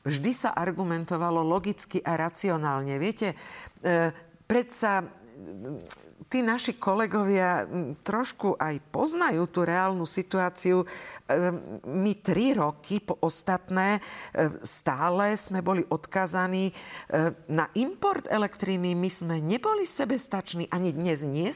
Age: 50-69